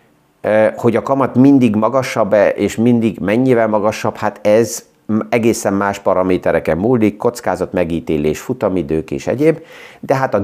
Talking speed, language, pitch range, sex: 130 wpm, Hungarian, 90-115 Hz, male